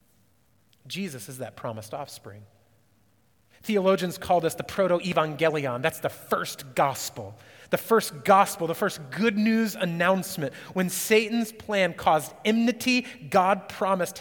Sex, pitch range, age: male, 140-195 Hz, 30-49